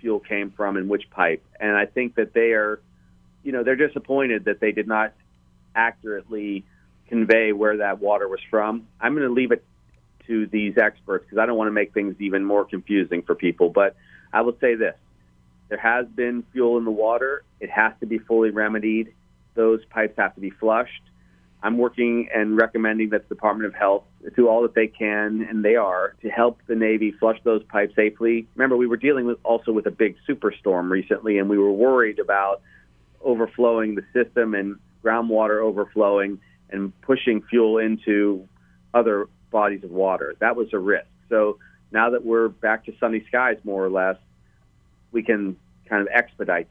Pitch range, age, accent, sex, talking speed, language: 95-115 Hz, 40-59, American, male, 190 wpm, English